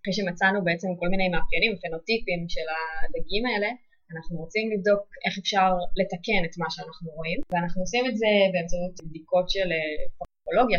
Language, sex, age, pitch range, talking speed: Hebrew, female, 20-39, 170-195 Hz, 155 wpm